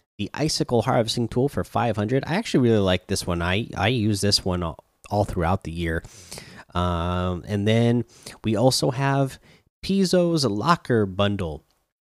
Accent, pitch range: American, 95-120 Hz